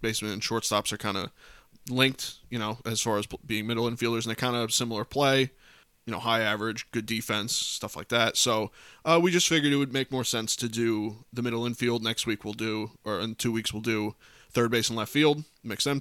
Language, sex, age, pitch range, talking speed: English, male, 20-39, 110-125 Hz, 230 wpm